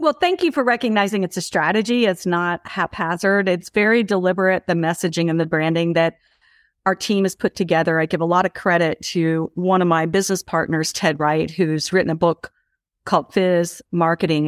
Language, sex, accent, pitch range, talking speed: English, female, American, 170-215 Hz, 190 wpm